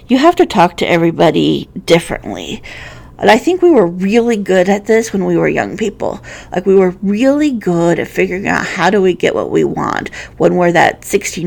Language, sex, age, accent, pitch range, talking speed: English, female, 40-59, American, 175-245 Hz, 210 wpm